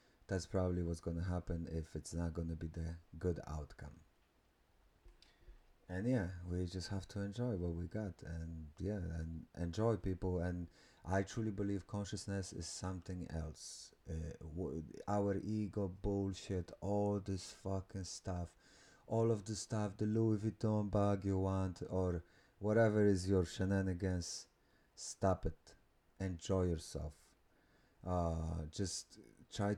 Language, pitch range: English, 85-105 Hz